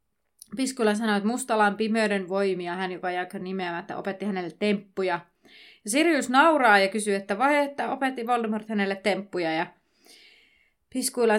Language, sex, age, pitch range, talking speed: Finnish, female, 30-49, 190-230 Hz, 140 wpm